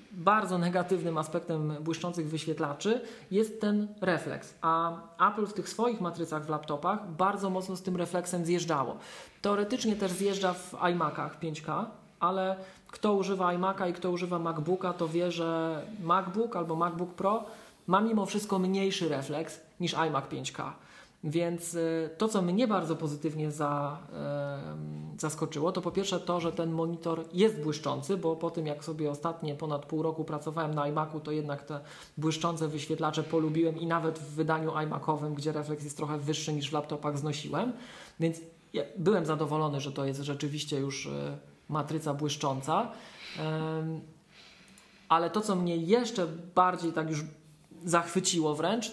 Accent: native